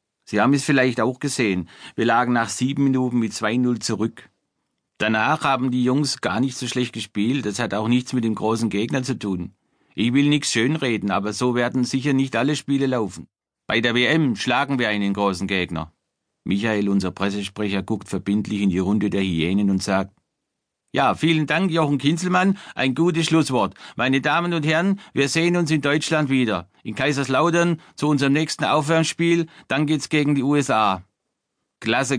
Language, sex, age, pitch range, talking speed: German, male, 50-69, 105-135 Hz, 175 wpm